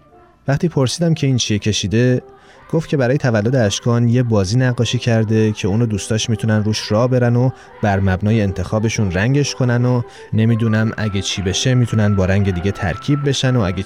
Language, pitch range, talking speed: Persian, 100-125 Hz, 175 wpm